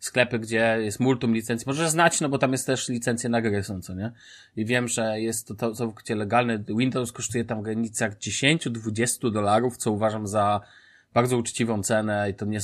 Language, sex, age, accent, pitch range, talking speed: Polish, male, 20-39, native, 115-140 Hz, 185 wpm